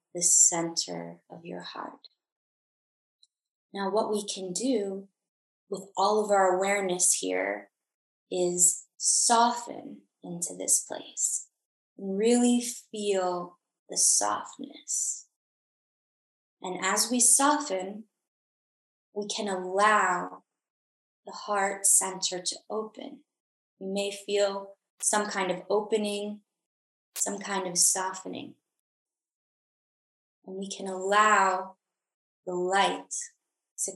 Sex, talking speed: female, 95 wpm